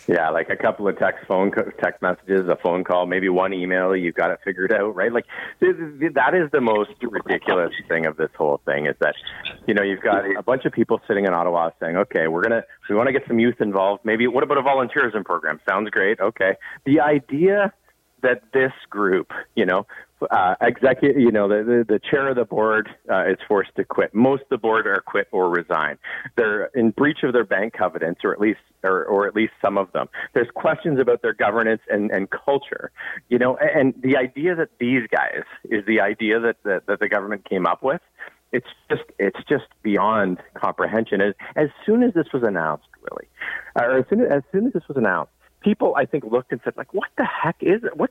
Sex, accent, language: male, American, English